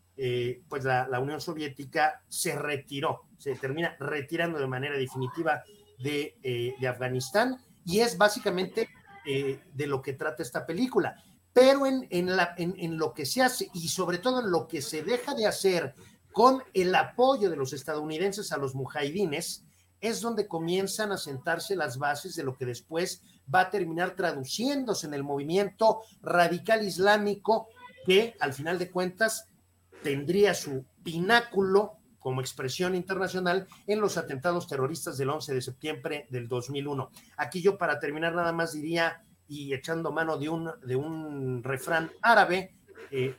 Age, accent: 50-69, Mexican